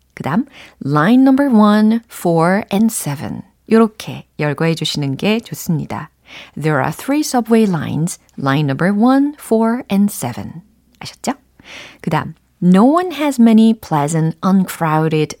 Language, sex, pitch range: Korean, female, 160-240 Hz